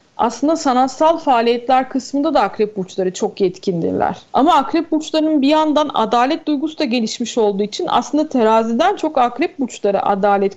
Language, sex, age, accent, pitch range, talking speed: Turkish, female, 40-59, native, 205-295 Hz, 150 wpm